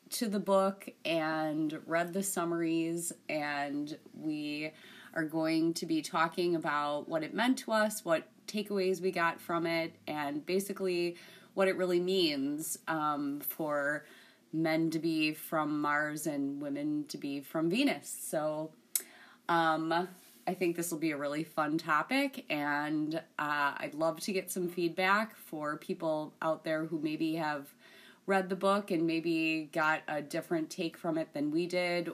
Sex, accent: female, American